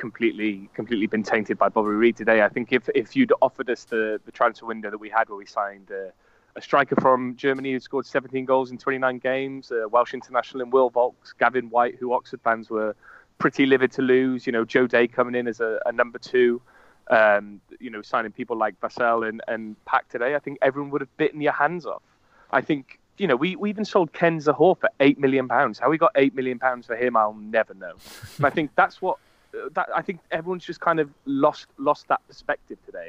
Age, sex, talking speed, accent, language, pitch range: 20-39, male, 230 wpm, British, English, 110-135 Hz